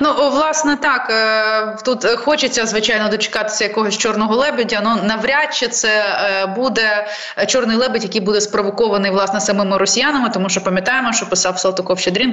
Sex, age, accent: female, 20-39, native